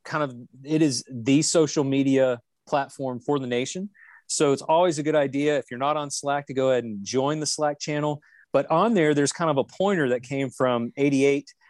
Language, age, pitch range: English, 30-49, 125-155 Hz